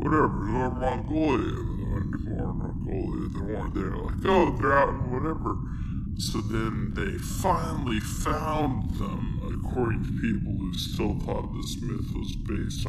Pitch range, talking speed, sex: 100-120 Hz, 145 wpm, female